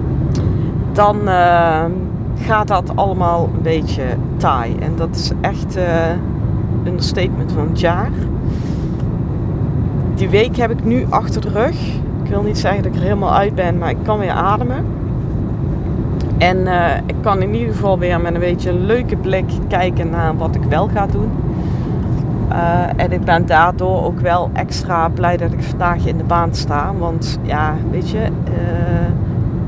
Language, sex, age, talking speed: Dutch, female, 40-59, 170 wpm